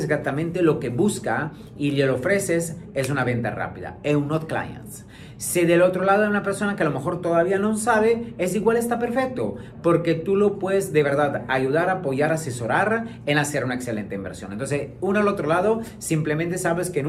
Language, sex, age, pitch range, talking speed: Spanish, male, 40-59, 140-180 Hz, 195 wpm